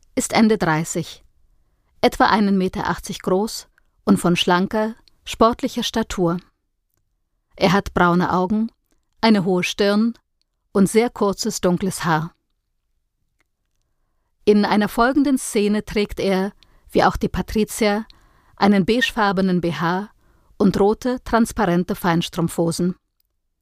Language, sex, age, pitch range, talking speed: German, female, 50-69, 180-220 Hz, 105 wpm